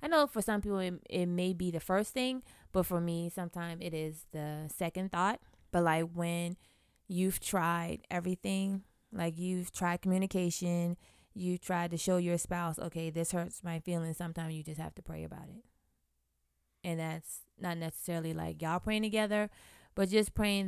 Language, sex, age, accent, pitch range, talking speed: English, female, 20-39, American, 160-185 Hz, 175 wpm